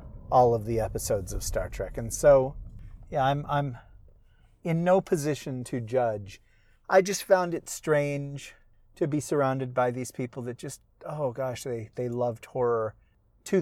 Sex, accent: male, American